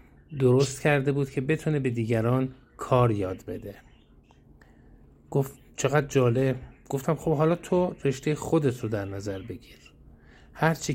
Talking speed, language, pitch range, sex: 130 wpm, Persian, 115-145 Hz, male